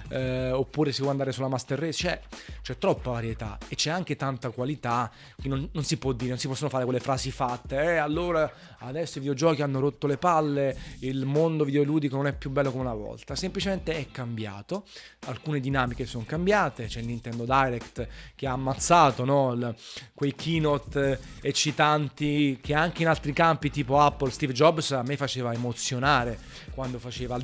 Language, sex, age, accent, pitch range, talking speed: Italian, male, 20-39, native, 120-150 Hz, 185 wpm